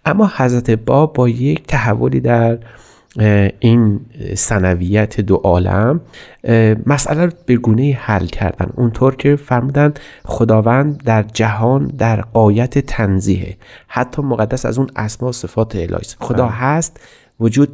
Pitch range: 105-140 Hz